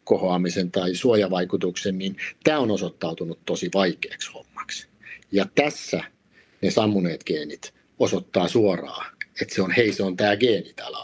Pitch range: 95-125 Hz